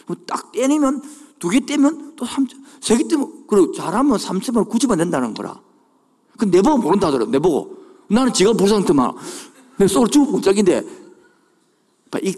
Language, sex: Korean, male